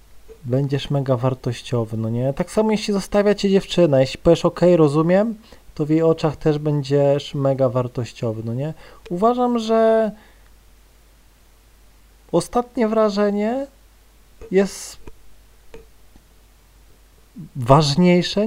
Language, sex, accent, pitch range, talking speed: Polish, male, native, 130-190 Hz, 100 wpm